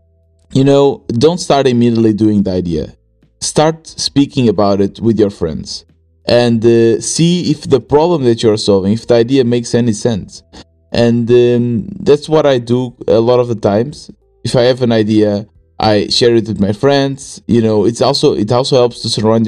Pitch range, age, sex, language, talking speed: 110-135 Hz, 20-39, male, English, 190 wpm